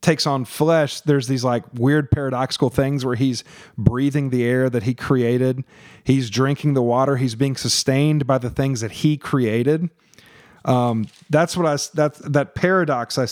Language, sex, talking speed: English, male, 170 wpm